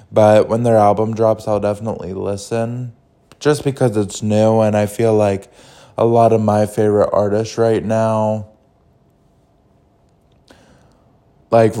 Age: 20-39